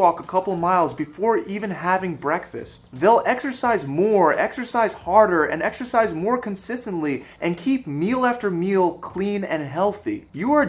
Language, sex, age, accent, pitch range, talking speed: English, male, 20-39, American, 160-225 Hz, 145 wpm